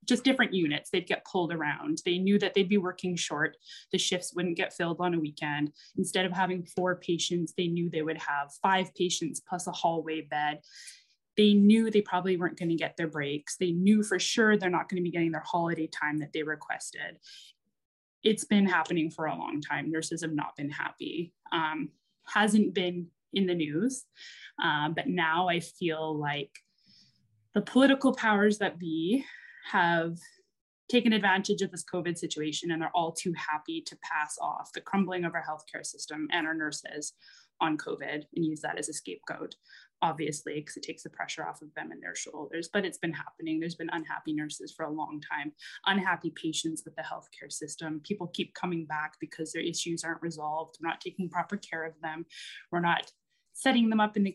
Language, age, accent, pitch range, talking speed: English, 10-29, American, 160-190 Hz, 195 wpm